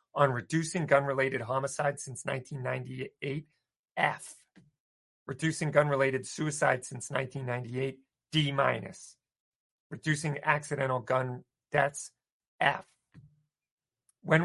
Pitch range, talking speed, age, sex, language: 125-155 Hz, 85 wpm, 40-59, male, English